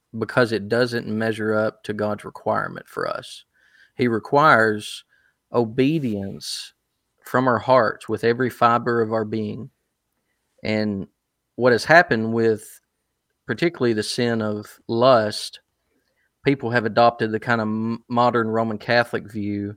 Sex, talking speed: male, 130 wpm